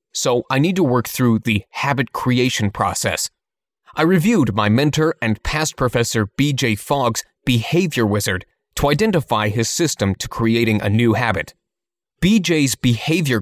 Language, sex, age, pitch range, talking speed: English, male, 30-49, 110-150 Hz, 145 wpm